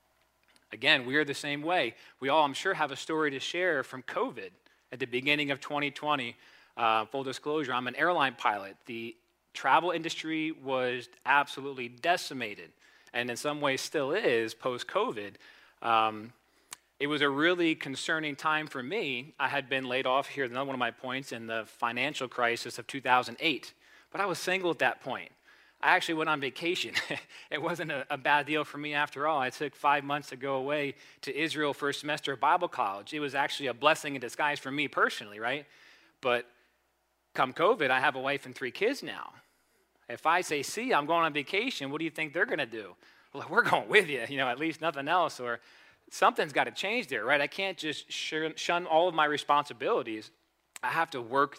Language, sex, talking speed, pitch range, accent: English, male, 200 wpm, 125-155 Hz, American